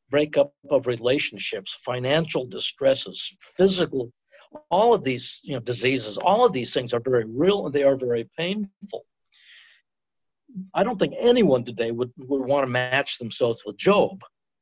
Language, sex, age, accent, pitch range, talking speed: English, male, 60-79, American, 130-180 Hz, 150 wpm